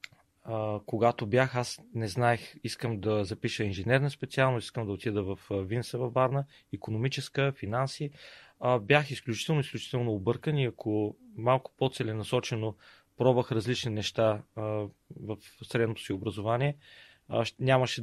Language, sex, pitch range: Bulgarian, male, 110-130 Hz